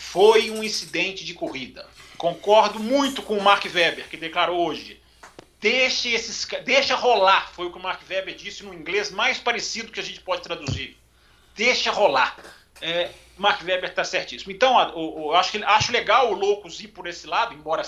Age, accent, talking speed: 40-59, Brazilian, 190 wpm